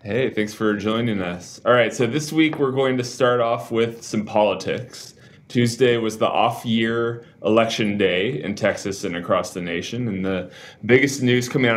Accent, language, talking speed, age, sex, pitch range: American, English, 180 wpm, 20-39, male, 100-115 Hz